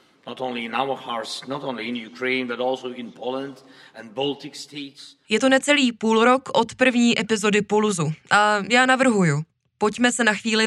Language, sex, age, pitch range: Czech, female, 20-39, 180-230 Hz